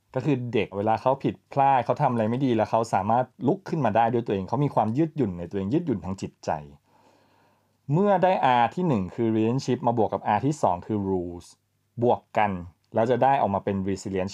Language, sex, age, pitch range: Thai, male, 20-39, 100-130 Hz